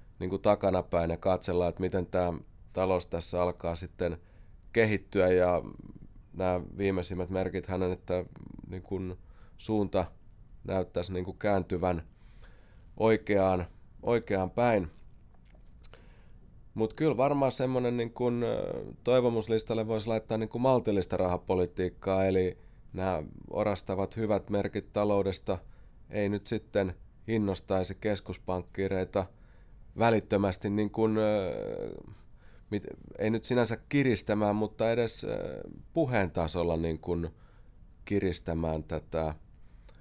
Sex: male